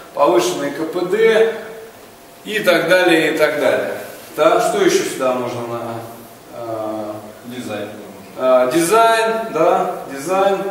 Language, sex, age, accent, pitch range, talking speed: Russian, male, 20-39, native, 145-210 Hz, 100 wpm